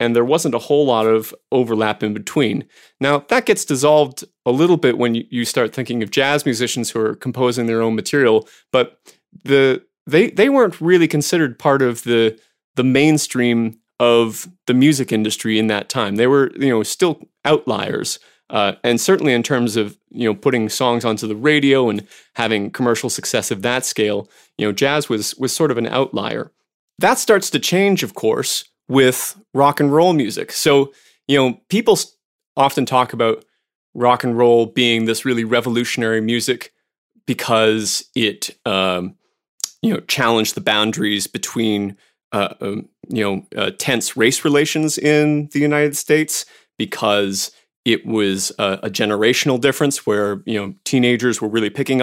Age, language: 30-49, English